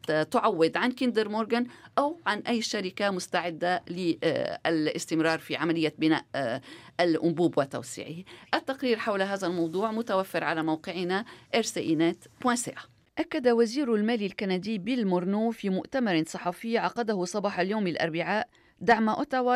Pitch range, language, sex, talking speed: 180-235 Hz, Arabic, female, 115 wpm